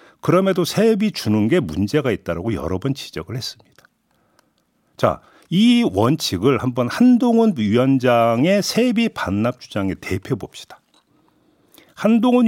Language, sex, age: Korean, male, 50-69